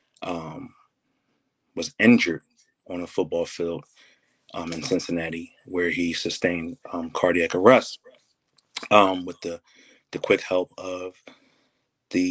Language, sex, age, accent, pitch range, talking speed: English, male, 20-39, American, 85-95 Hz, 115 wpm